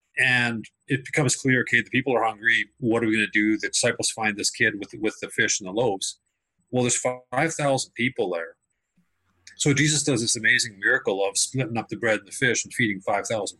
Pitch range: 95-135 Hz